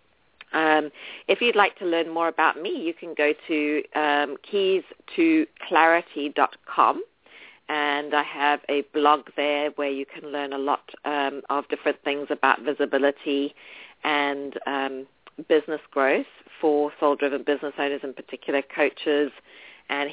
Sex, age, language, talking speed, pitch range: female, 40-59, English, 145 wpm, 145-170 Hz